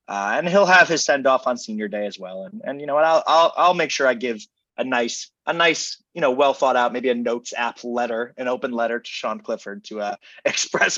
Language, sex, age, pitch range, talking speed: English, male, 20-39, 105-145 Hz, 255 wpm